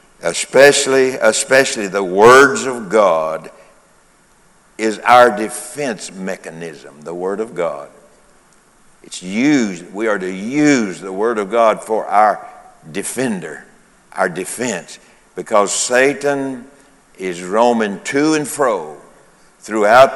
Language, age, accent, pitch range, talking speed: English, 60-79, American, 110-130 Hz, 110 wpm